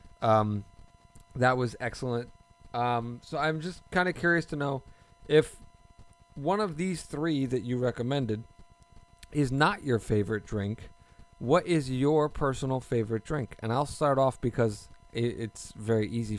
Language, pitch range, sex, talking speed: English, 110-140 Hz, male, 150 wpm